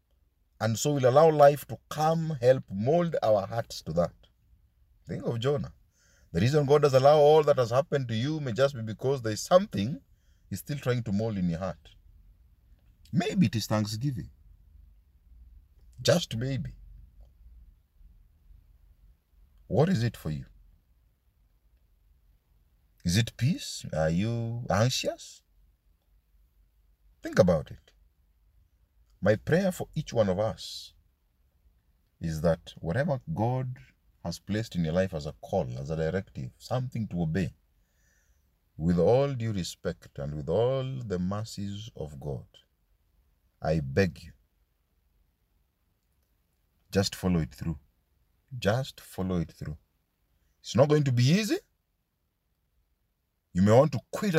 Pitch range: 75-125 Hz